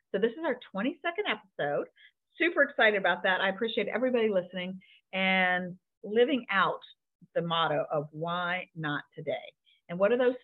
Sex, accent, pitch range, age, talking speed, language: female, American, 185-270 Hz, 40-59, 155 wpm, English